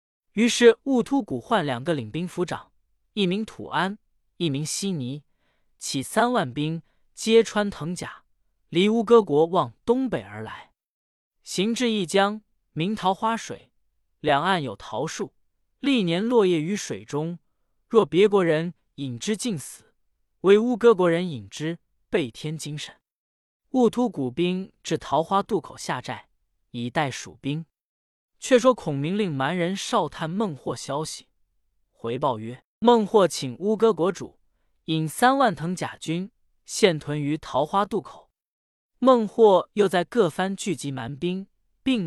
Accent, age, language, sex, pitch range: native, 20-39, Chinese, male, 150-215 Hz